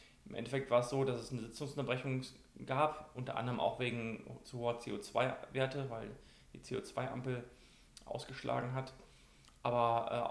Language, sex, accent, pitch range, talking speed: German, male, German, 115-130 Hz, 140 wpm